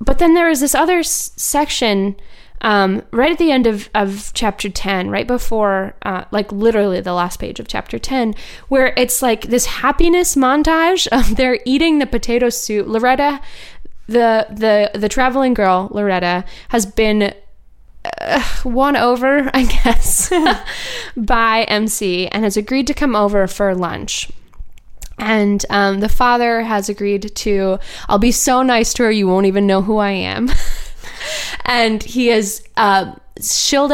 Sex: female